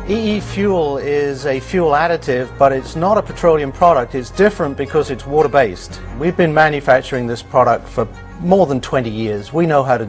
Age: 50-69